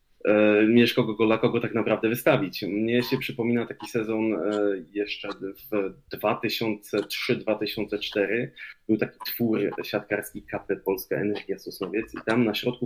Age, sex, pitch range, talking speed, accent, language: 20-39, male, 100-115 Hz, 125 wpm, native, Polish